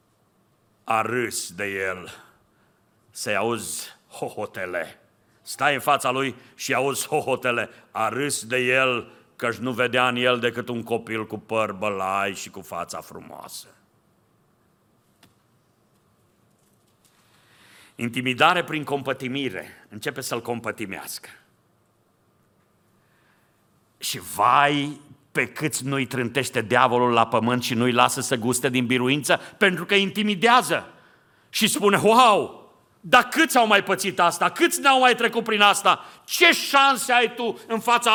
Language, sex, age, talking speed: Romanian, male, 50-69, 125 wpm